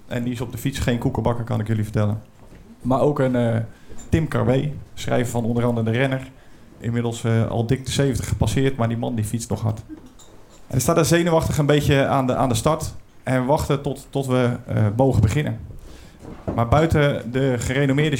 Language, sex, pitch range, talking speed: Dutch, male, 115-140 Hz, 210 wpm